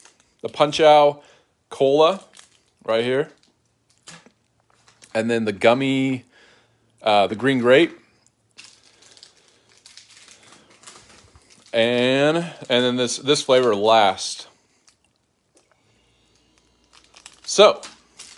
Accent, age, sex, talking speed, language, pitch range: American, 30-49, male, 70 wpm, English, 115-140 Hz